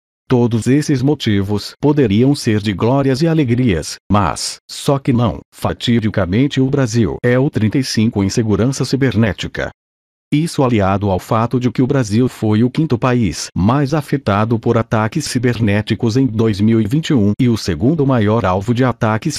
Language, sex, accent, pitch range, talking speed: Portuguese, male, Brazilian, 105-130 Hz, 150 wpm